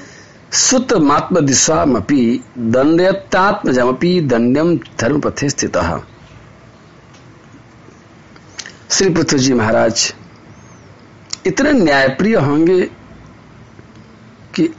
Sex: male